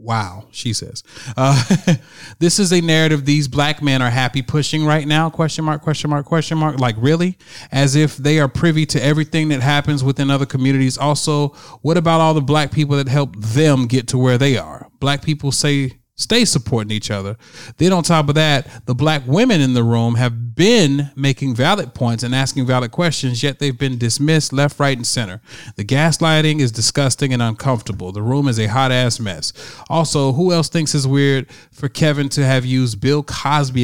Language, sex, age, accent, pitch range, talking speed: English, male, 30-49, American, 120-150 Hz, 200 wpm